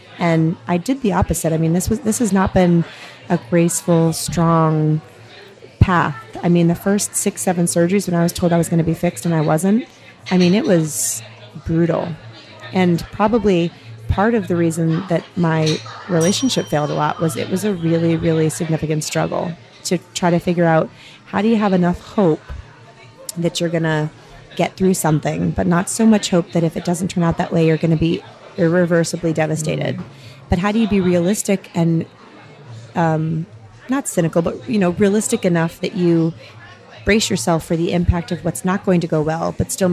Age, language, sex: 30-49, English, female